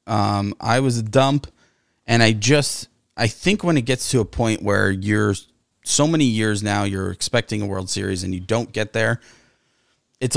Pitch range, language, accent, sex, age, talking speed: 100-130 Hz, English, American, male, 20-39, 190 wpm